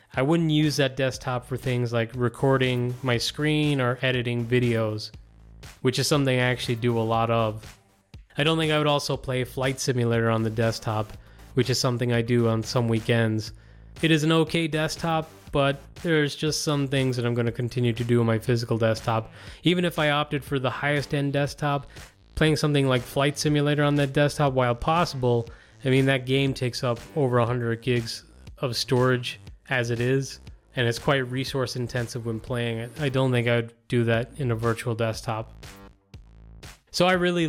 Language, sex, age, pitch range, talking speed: English, male, 20-39, 120-145 Hz, 185 wpm